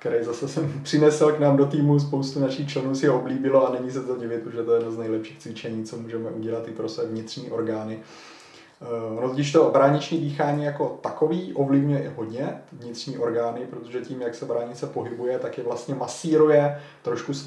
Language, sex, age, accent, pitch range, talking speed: Czech, male, 30-49, native, 120-145 Hz, 200 wpm